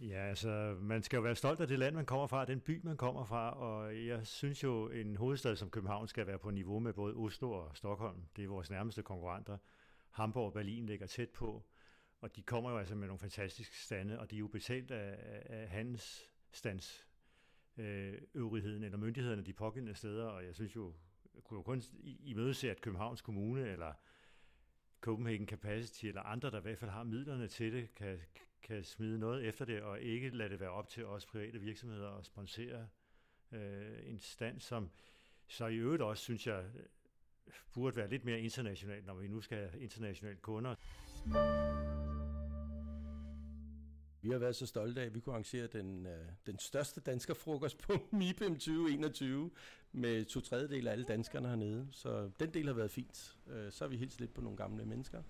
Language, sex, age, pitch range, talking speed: Danish, male, 60-79, 100-120 Hz, 190 wpm